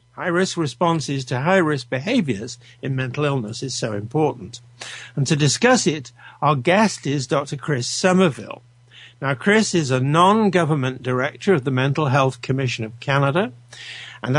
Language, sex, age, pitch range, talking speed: English, male, 60-79, 125-170 Hz, 145 wpm